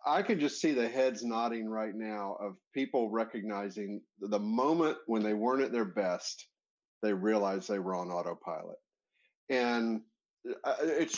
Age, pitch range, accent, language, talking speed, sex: 50-69, 110-135 Hz, American, English, 150 wpm, male